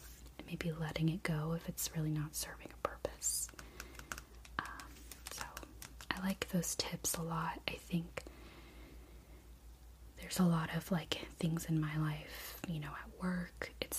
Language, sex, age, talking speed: English, female, 30-49, 150 wpm